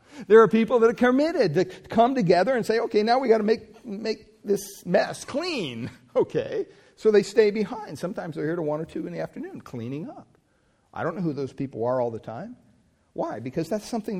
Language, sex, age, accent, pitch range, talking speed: English, male, 50-69, American, 130-185 Hz, 215 wpm